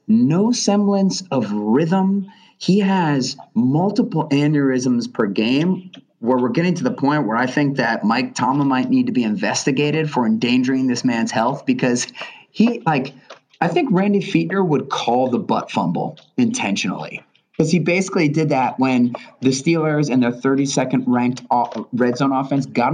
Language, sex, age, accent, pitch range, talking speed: English, male, 30-49, American, 125-175 Hz, 160 wpm